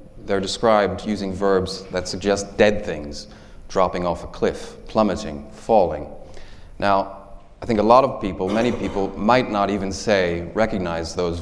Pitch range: 90-105 Hz